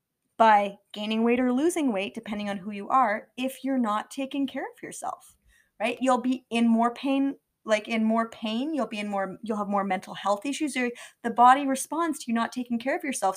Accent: American